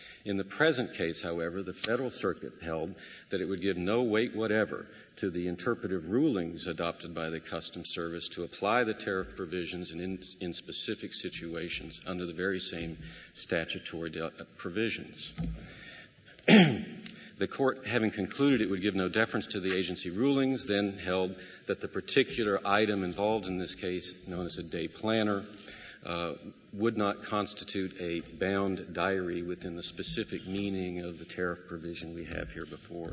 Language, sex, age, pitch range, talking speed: English, male, 50-69, 90-105 Hz, 160 wpm